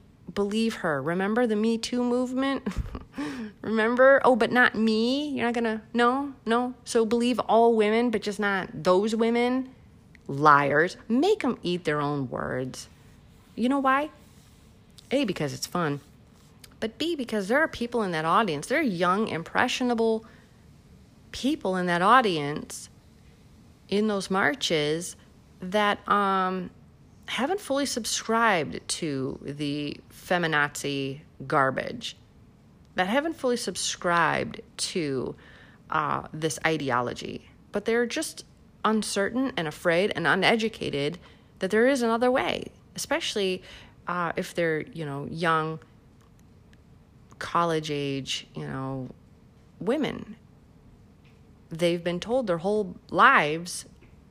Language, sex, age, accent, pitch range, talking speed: English, female, 30-49, American, 165-240 Hz, 120 wpm